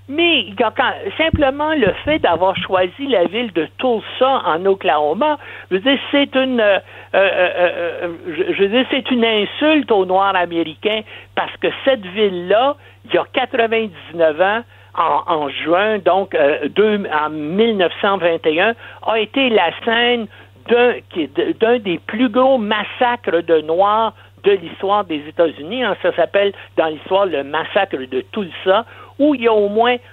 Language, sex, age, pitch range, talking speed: French, male, 60-79, 180-250 Hz, 135 wpm